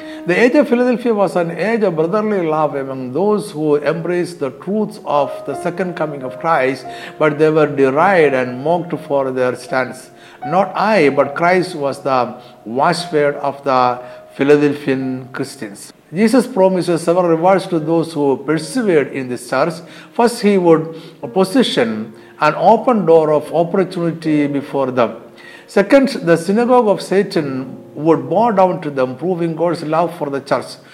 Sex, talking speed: male, 155 wpm